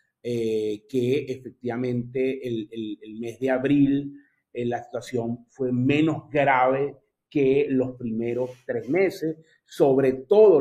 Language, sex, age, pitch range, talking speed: Spanish, male, 30-49, 120-145 Hz, 125 wpm